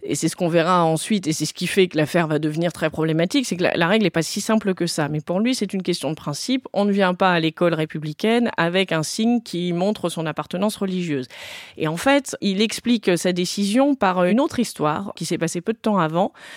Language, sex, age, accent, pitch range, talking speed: French, female, 30-49, French, 165-220 Hz, 250 wpm